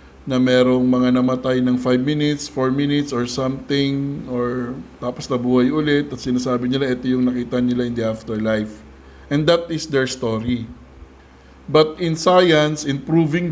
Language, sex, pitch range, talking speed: Filipino, male, 125-150 Hz, 155 wpm